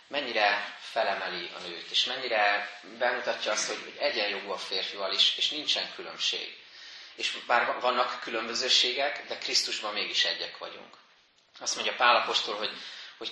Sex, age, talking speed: male, 30-49, 140 wpm